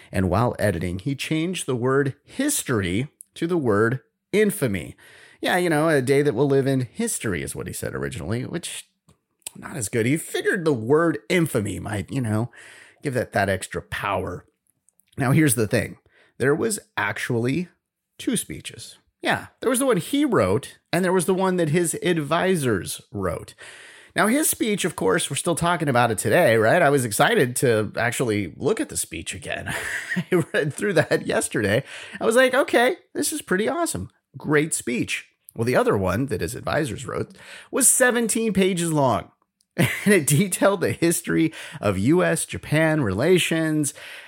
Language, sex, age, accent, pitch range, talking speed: English, male, 30-49, American, 120-185 Hz, 170 wpm